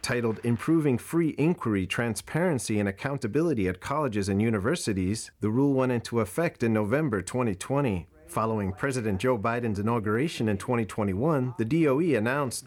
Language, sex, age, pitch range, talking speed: English, male, 40-59, 95-130 Hz, 135 wpm